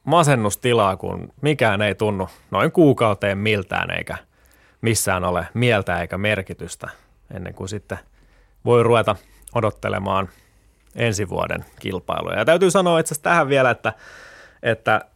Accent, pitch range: native, 95-125 Hz